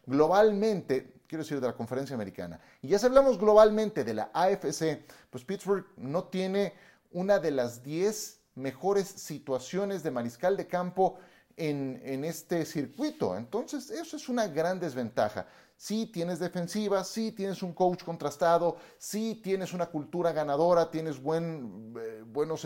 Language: Spanish